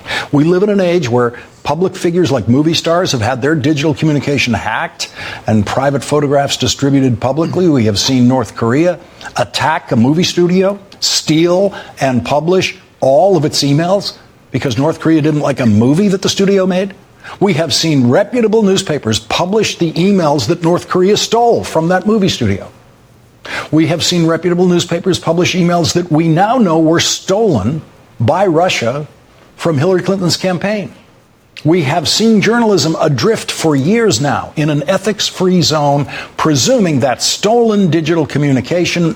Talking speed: 155 wpm